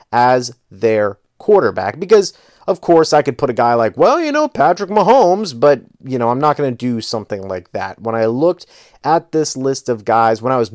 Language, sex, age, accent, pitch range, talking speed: English, male, 30-49, American, 115-155 Hz, 220 wpm